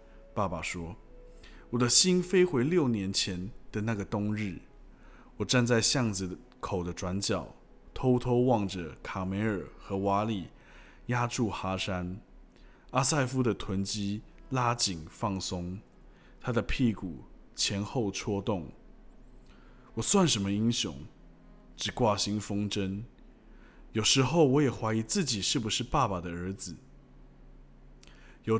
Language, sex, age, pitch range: Chinese, male, 20-39, 95-130 Hz